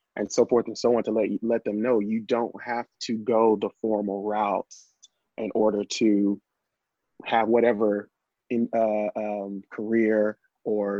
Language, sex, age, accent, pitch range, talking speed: English, male, 30-49, American, 105-125 Hz, 165 wpm